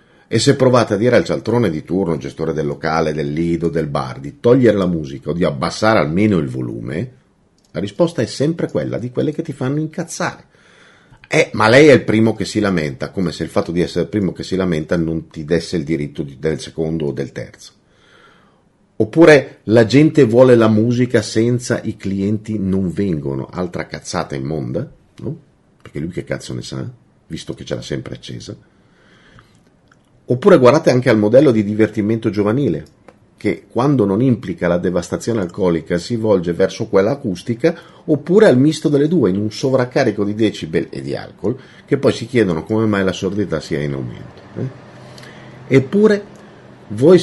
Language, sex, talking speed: Italian, male, 180 wpm